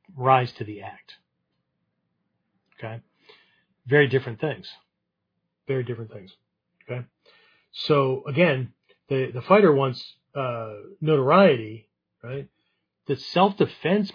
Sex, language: male, English